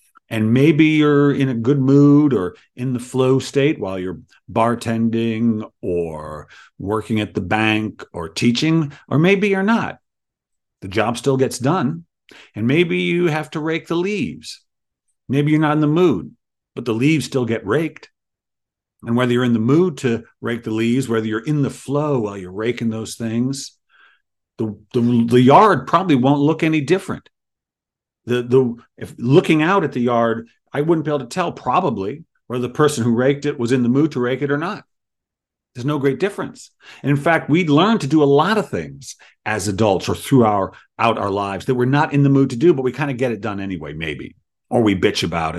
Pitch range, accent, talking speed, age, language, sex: 115-150 Hz, American, 205 wpm, 50-69, English, male